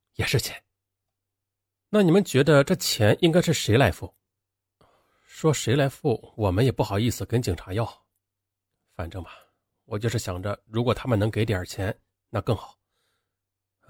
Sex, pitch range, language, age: male, 95-115 Hz, Chinese, 30-49